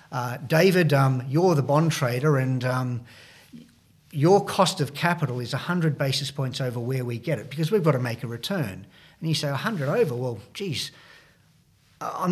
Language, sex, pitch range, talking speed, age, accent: English, male, 125-160 Hz, 180 wpm, 50-69, Australian